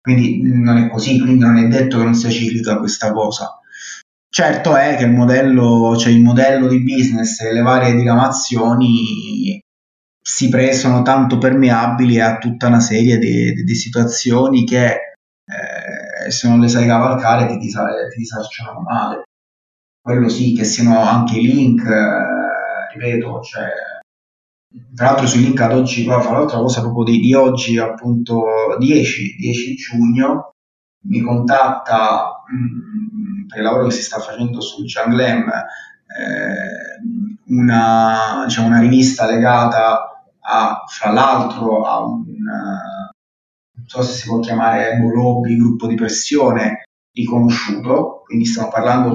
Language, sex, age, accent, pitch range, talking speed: Italian, male, 20-39, native, 115-130 Hz, 145 wpm